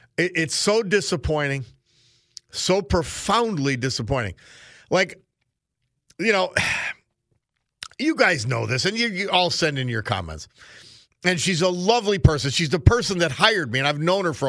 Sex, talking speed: male, 155 wpm